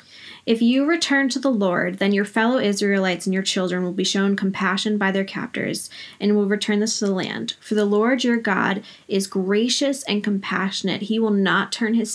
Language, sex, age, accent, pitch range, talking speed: English, female, 10-29, American, 190-215 Hz, 205 wpm